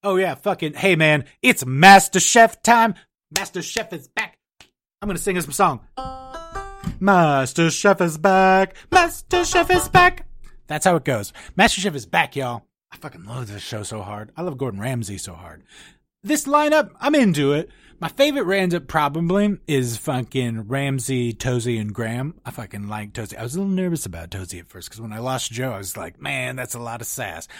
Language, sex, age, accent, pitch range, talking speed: English, male, 30-49, American, 110-175 Hz, 200 wpm